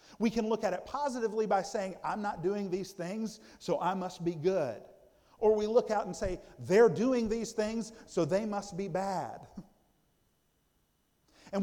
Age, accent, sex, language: 50-69, American, male, English